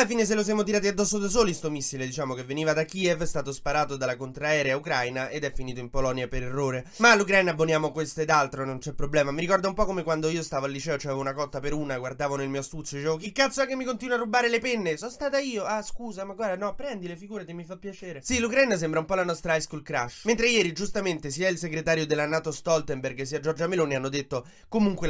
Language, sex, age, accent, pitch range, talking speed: Italian, male, 20-39, native, 140-185 Hz, 265 wpm